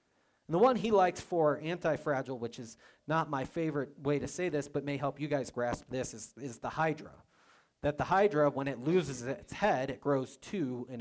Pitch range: 130-160 Hz